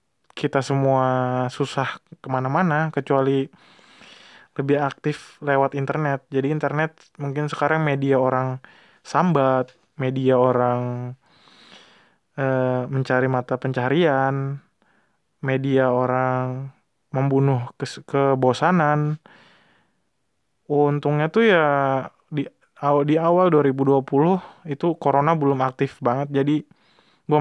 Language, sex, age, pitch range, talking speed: Indonesian, male, 20-39, 130-155 Hz, 90 wpm